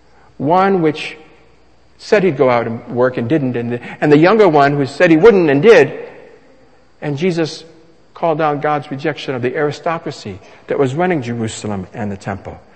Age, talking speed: 60-79, 175 wpm